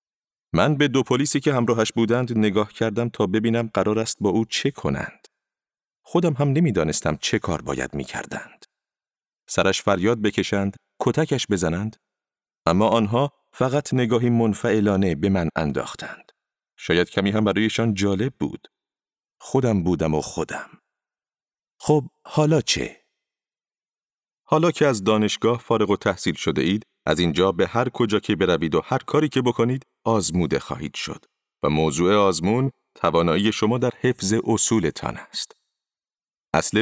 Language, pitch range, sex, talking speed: Persian, 100-120 Hz, male, 140 wpm